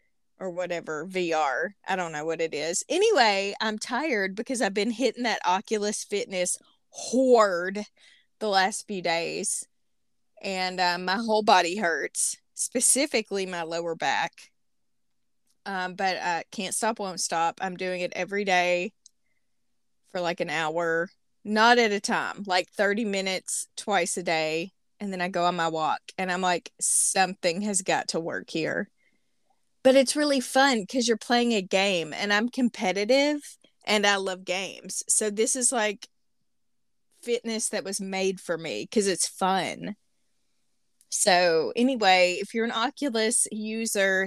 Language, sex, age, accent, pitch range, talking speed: English, female, 20-39, American, 180-225 Hz, 150 wpm